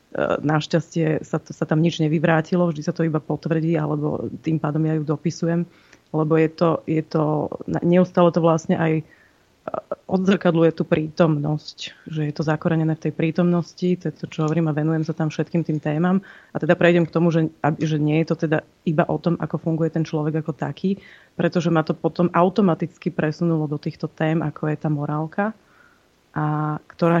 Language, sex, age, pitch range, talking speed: Slovak, female, 30-49, 155-170 Hz, 185 wpm